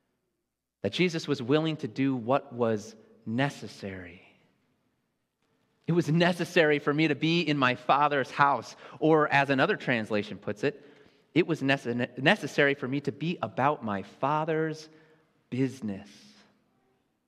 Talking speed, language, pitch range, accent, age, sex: 130 wpm, English, 125-175 Hz, American, 30-49, male